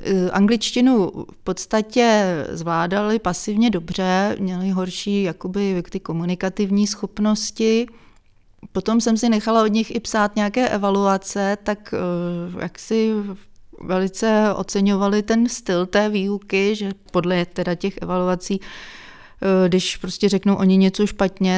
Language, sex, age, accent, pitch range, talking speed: Czech, female, 30-49, native, 175-205 Hz, 115 wpm